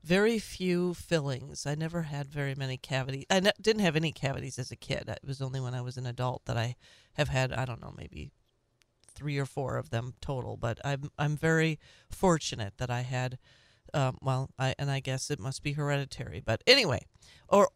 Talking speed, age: 205 wpm, 40-59